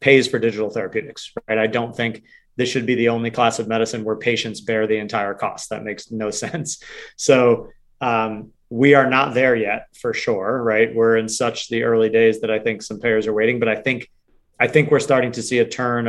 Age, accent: 30-49, American